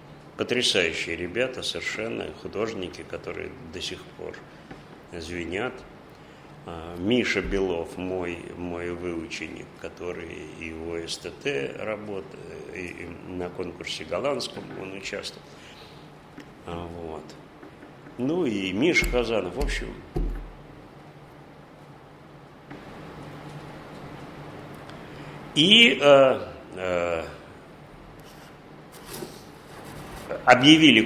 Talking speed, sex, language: 65 wpm, male, Russian